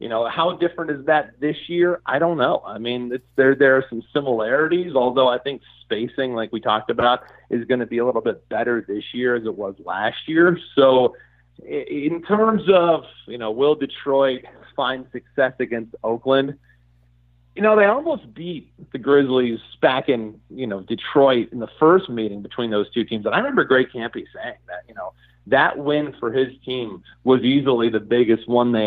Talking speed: 195 wpm